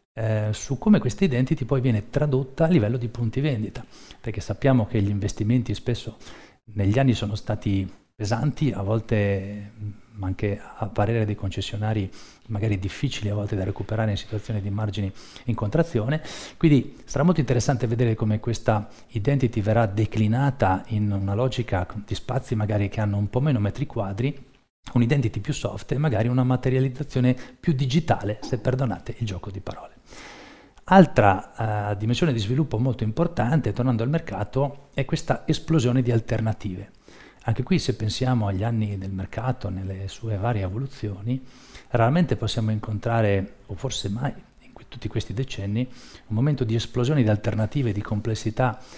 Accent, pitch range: native, 105-130 Hz